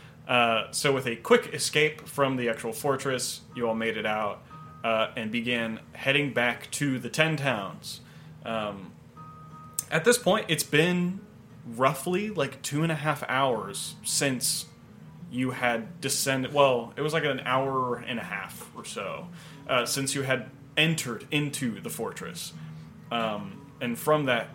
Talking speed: 155 wpm